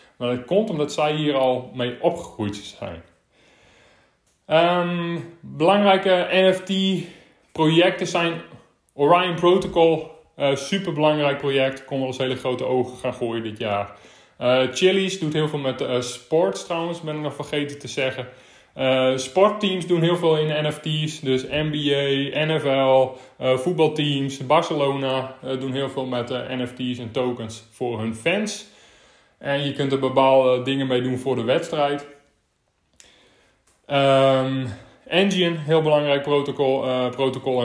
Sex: male